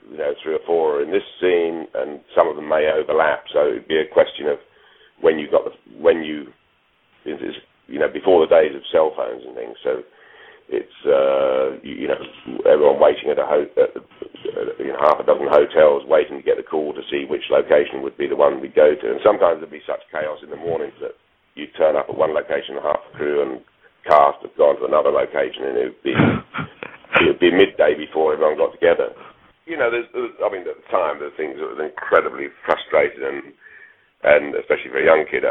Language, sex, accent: English, male, British